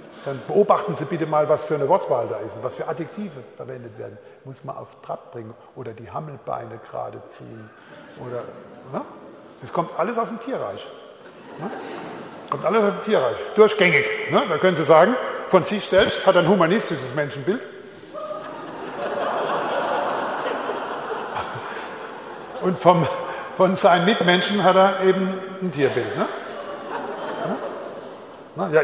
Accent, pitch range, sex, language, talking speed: German, 155-220 Hz, male, German, 140 wpm